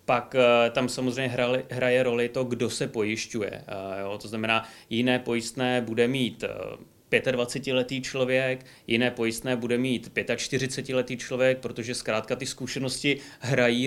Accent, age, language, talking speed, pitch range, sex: native, 30-49, Czech, 120 wpm, 110-125 Hz, male